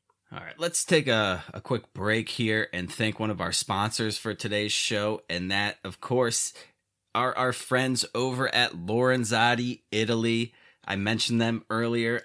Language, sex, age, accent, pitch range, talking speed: English, male, 30-49, American, 100-120 Hz, 160 wpm